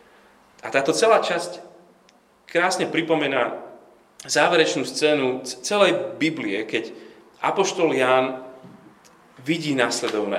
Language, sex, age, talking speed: Slovak, male, 30-49, 90 wpm